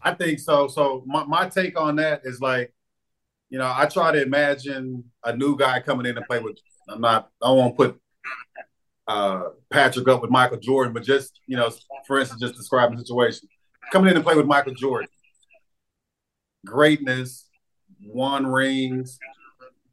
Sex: male